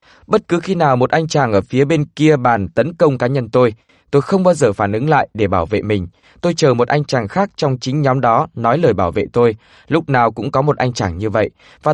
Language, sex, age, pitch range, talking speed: Vietnamese, male, 20-39, 120-160 Hz, 265 wpm